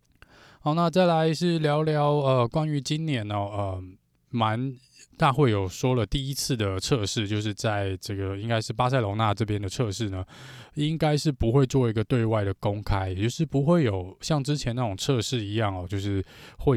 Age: 20-39